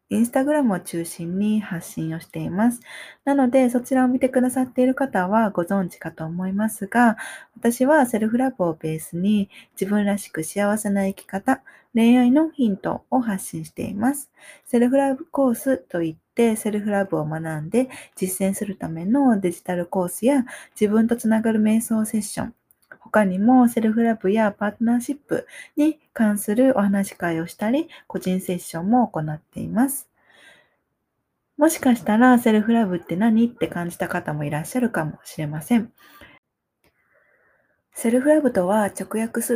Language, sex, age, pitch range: Japanese, female, 20-39, 185-250 Hz